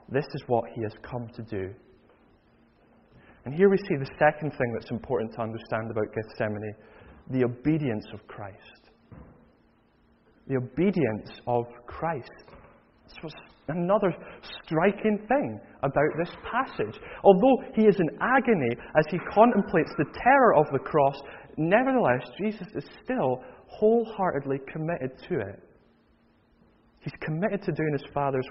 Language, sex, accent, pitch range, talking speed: English, male, British, 120-195 Hz, 135 wpm